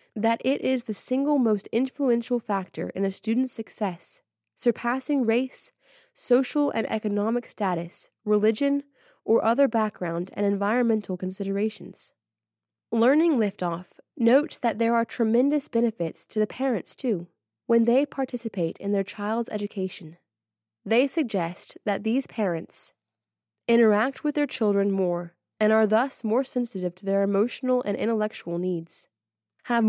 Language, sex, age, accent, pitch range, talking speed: English, female, 20-39, American, 185-235 Hz, 135 wpm